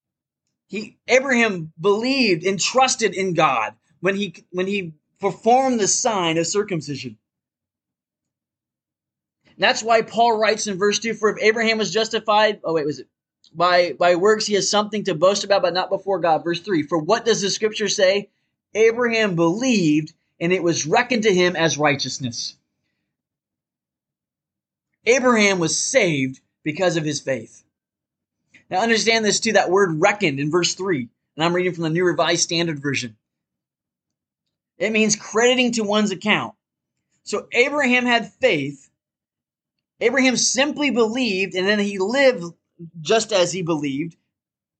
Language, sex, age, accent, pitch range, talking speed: English, male, 20-39, American, 170-225 Hz, 145 wpm